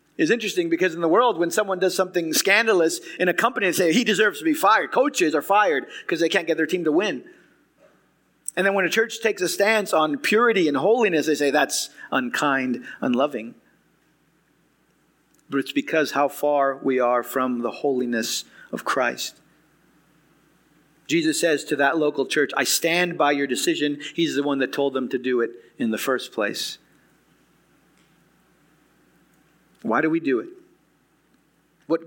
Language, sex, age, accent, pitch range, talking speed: English, male, 40-59, American, 135-175 Hz, 170 wpm